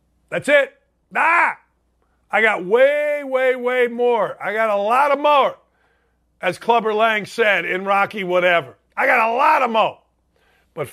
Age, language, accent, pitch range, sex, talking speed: 50-69, English, American, 175-240 Hz, male, 160 wpm